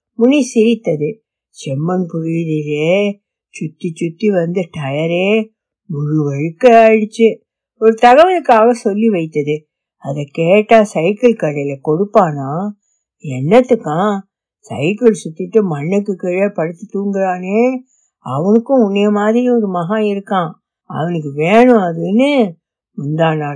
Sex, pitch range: female, 165-225 Hz